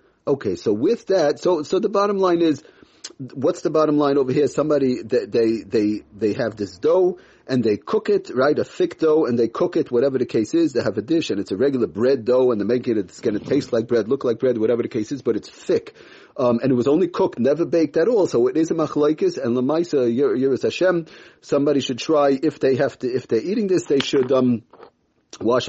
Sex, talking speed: male, 245 wpm